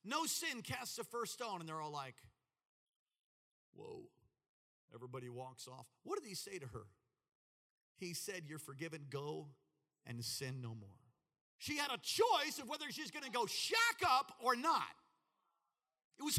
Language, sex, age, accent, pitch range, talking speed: English, male, 50-69, American, 115-155 Hz, 165 wpm